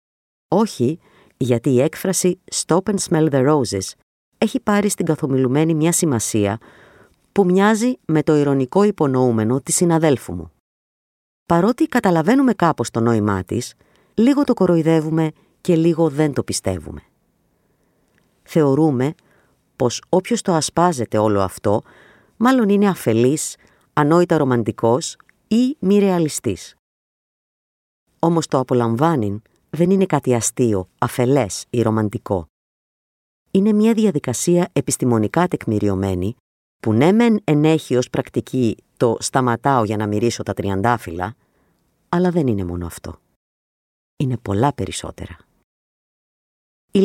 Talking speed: 115 wpm